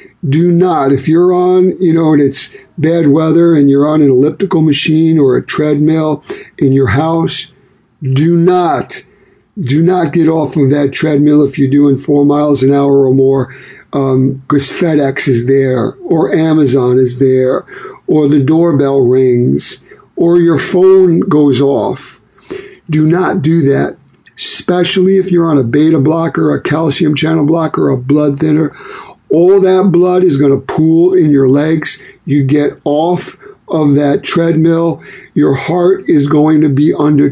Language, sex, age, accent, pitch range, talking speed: English, male, 60-79, American, 140-175 Hz, 160 wpm